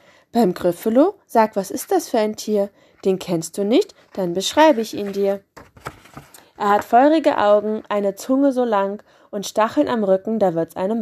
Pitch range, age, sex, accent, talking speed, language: 195-260 Hz, 20-39, female, German, 180 wpm, German